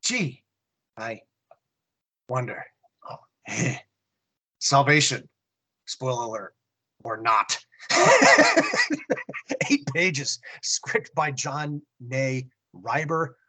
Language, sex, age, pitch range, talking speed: English, male, 30-49, 130-155 Hz, 70 wpm